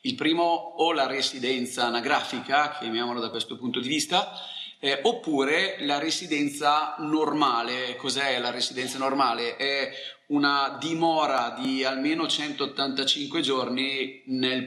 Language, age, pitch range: Italian, 30-49, 110-140 Hz